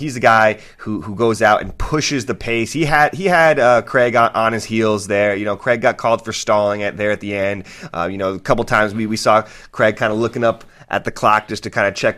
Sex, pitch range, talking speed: male, 100-120 Hz, 275 wpm